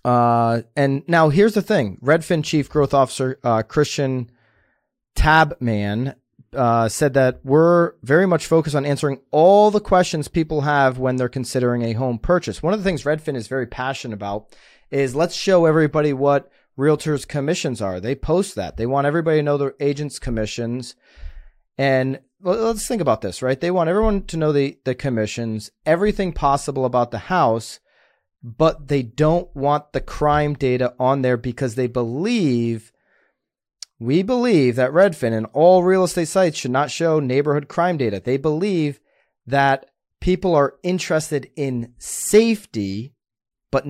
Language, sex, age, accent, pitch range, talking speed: English, male, 30-49, American, 125-165 Hz, 160 wpm